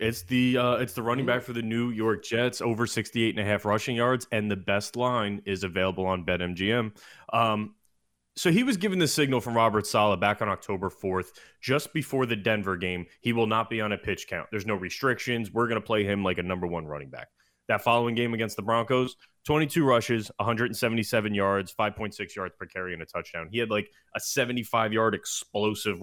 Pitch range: 100-125 Hz